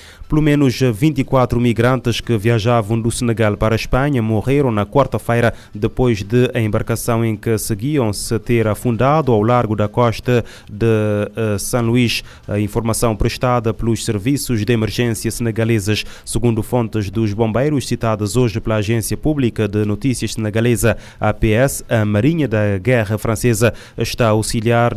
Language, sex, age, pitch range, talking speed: Portuguese, male, 20-39, 110-125 Hz, 140 wpm